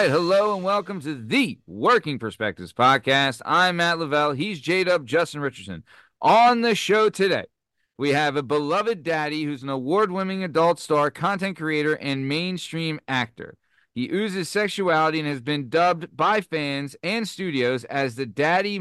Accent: American